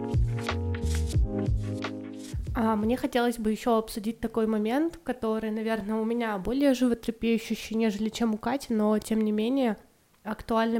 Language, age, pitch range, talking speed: English, 20-39, 215-235 Hz, 120 wpm